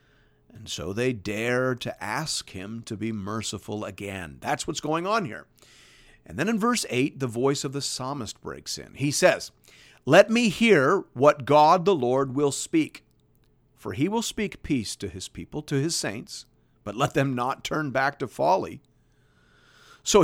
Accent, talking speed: American, 175 wpm